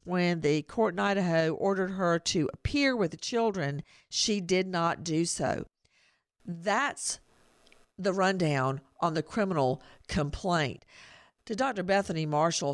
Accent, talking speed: American, 130 wpm